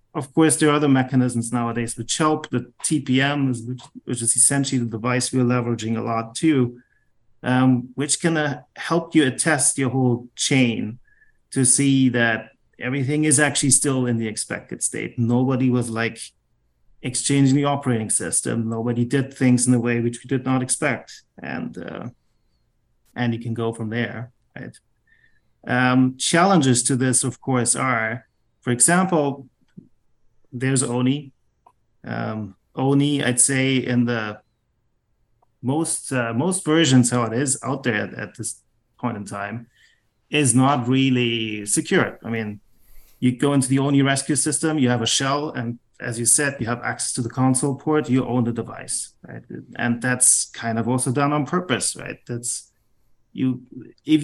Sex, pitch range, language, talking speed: male, 120-140 Hz, English, 165 wpm